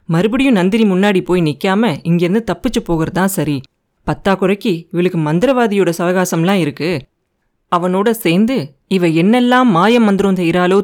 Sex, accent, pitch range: female, native, 165-225 Hz